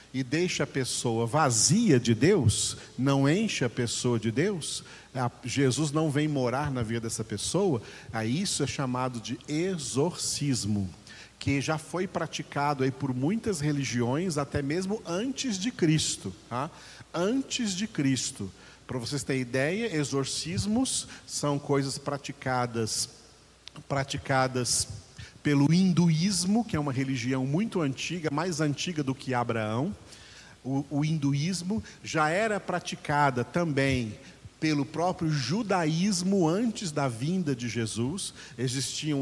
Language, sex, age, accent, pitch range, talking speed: Portuguese, male, 50-69, Brazilian, 130-165 Hz, 120 wpm